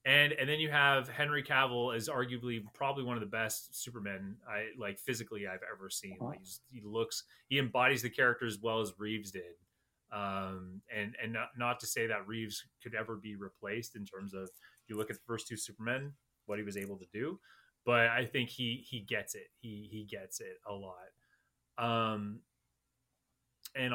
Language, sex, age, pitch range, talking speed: English, male, 30-49, 105-135 Hz, 200 wpm